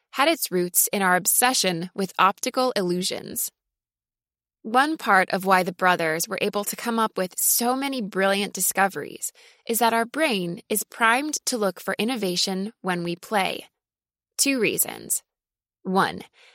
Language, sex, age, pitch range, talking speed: English, female, 20-39, 185-250 Hz, 150 wpm